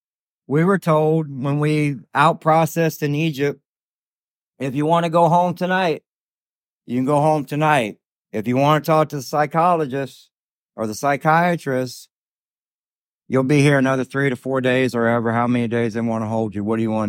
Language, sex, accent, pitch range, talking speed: English, male, American, 120-155 Hz, 185 wpm